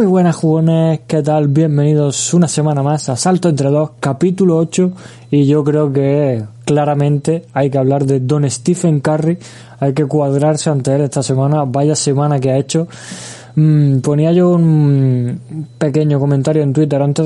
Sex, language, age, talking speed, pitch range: male, Spanish, 20-39, 165 wpm, 135-155 Hz